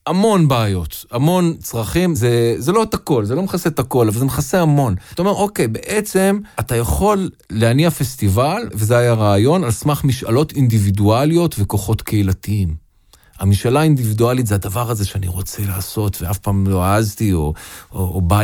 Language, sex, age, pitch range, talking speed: Hebrew, male, 40-59, 95-135 Hz, 165 wpm